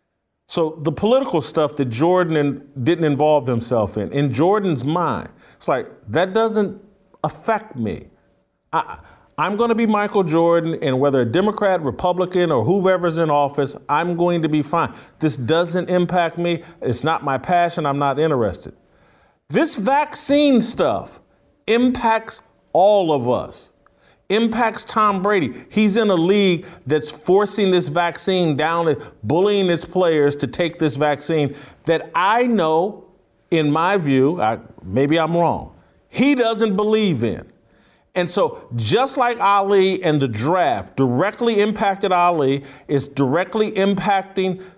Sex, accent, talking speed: male, American, 140 wpm